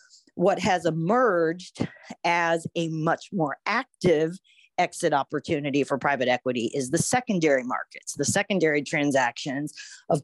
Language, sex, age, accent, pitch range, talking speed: English, female, 40-59, American, 155-200 Hz, 125 wpm